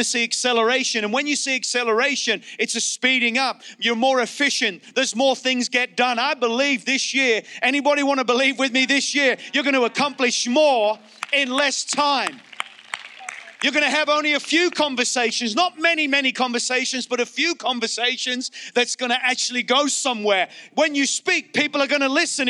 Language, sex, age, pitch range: English, male, 40-59, 175-255 Hz